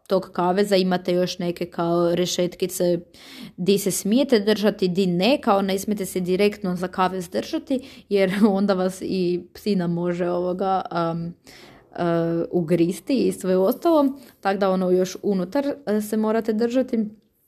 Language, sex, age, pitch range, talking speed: Croatian, female, 20-39, 180-200 Hz, 145 wpm